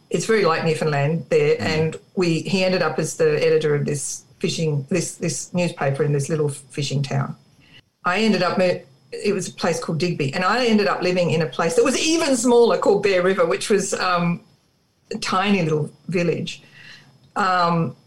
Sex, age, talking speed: female, 50-69, 185 wpm